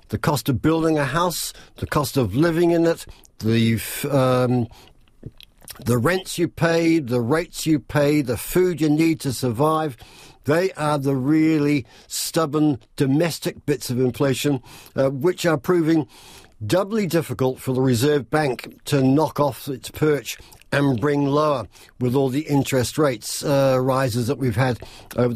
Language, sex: English, male